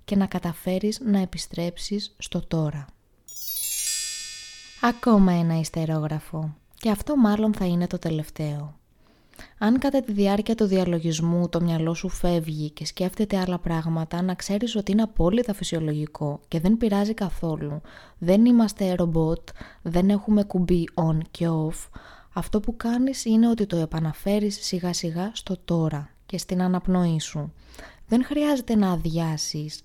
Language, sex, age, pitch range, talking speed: Greek, female, 20-39, 160-210 Hz, 140 wpm